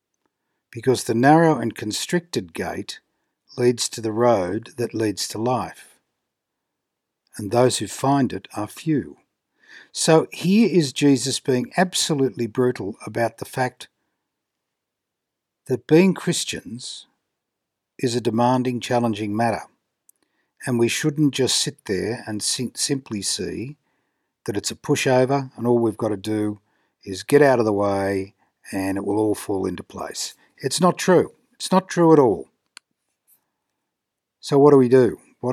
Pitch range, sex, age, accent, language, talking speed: 110-140 Hz, male, 60-79, Australian, English, 145 wpm